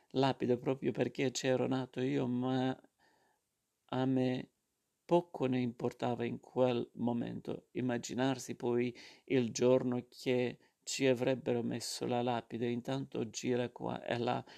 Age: 40-59